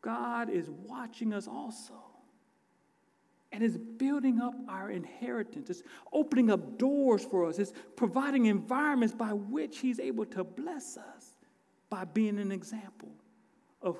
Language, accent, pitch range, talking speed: English, American, 195-270 Hz, 135 wpm